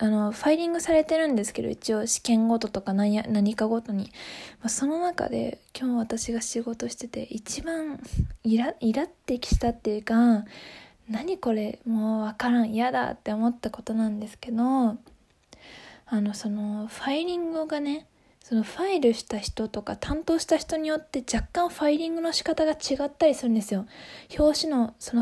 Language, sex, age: Japanese, female, 20-39